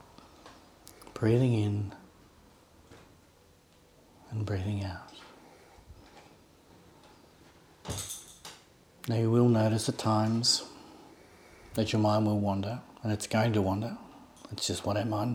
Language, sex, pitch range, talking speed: English, male, 85-115 Hz, 100 wpm